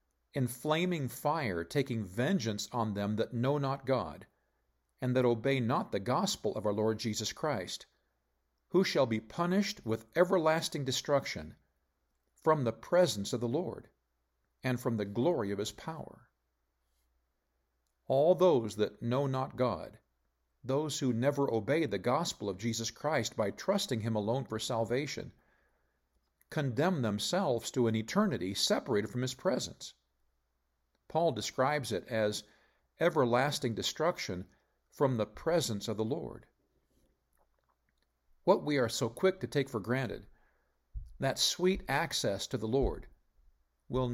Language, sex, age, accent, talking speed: English, male, 50-69, American, 135 wpm